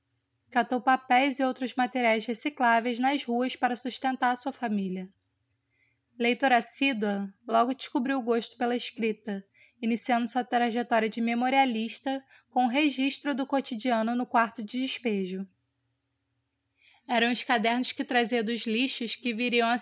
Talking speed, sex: 135 wpm, female